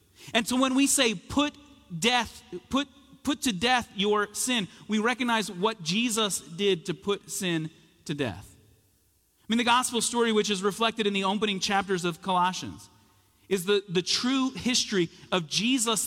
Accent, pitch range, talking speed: American, 145-215 Hz, 165 wpm